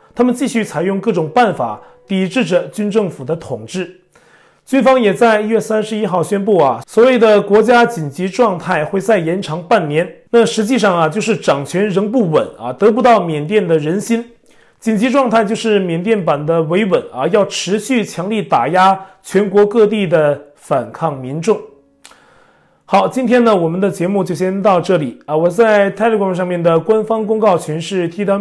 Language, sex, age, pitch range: Chinese, male, 30-49, 170-220 Hz